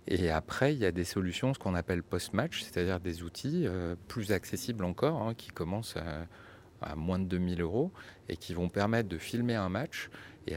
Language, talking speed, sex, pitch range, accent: French, 205 wpm, male, 85-110 Hz, French